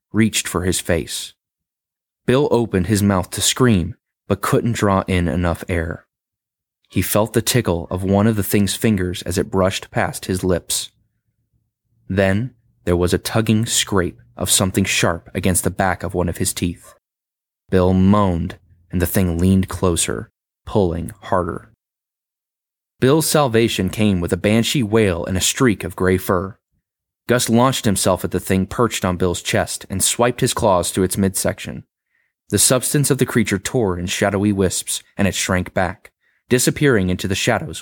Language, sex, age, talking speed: English, male, 20-39, 165 wpm